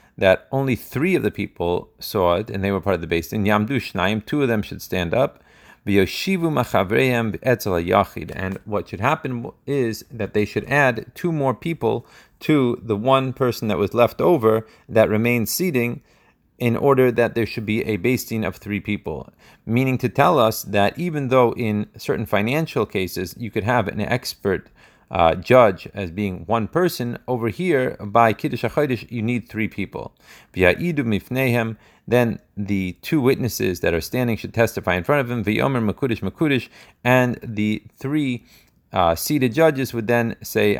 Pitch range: 100-125 Hz